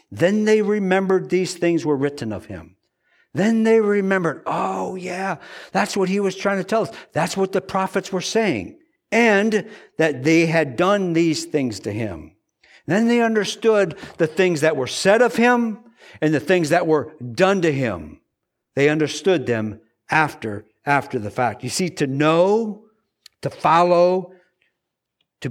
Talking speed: 160 wpm